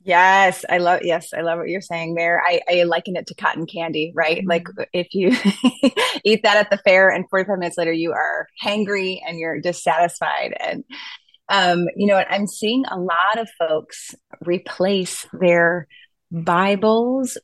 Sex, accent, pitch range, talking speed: female, American, 175-210 Hz, 170 wpm